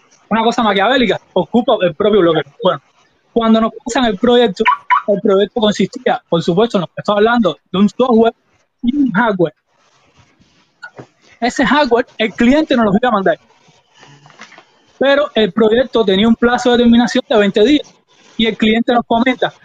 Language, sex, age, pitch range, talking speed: Spanish, male, 20-39, 200-245 Hz, 160 wpm